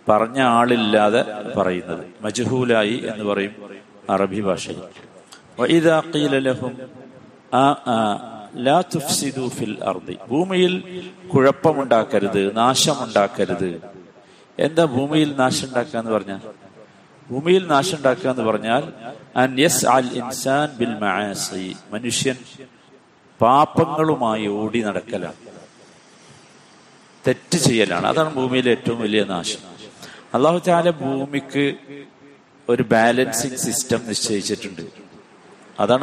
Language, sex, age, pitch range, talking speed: Malayalam, male, 50-69, 110-150 Hz, 60 wpm